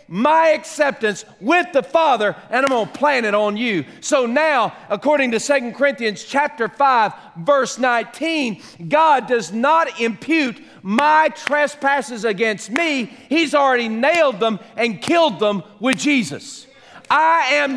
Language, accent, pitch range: English, American, 230-310 Hz